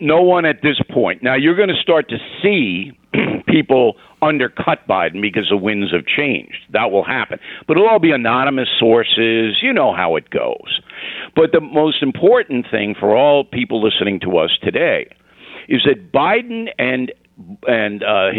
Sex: male